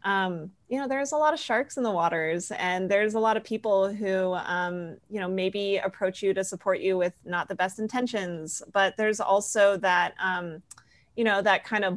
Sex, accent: female, American